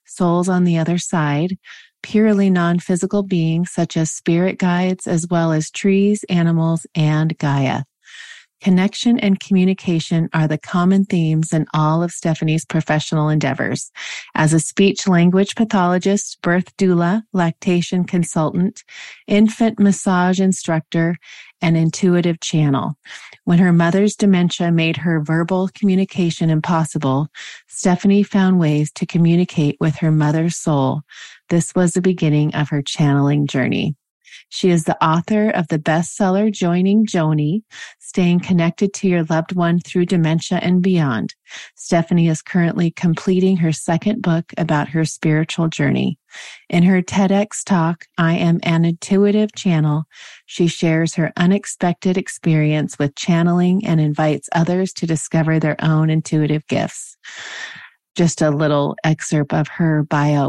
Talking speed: 135 wpm